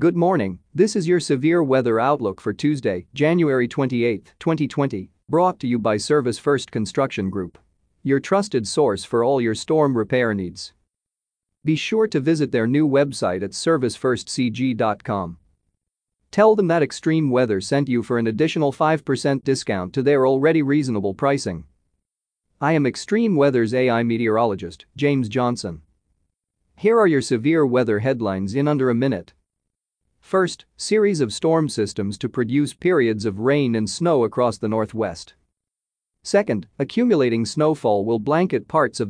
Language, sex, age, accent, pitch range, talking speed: English, male, 40-59, American, 110-150 Hz, 145 wpm